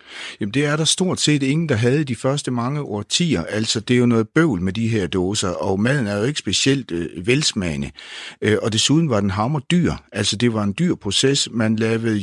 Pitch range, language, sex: 95-125 Hz, Danish, male